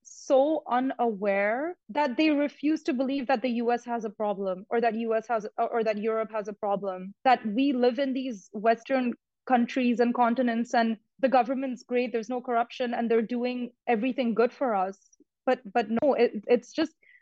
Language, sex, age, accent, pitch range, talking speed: English, female, 20-39, Indian, 225-270 Hz, 180 wpm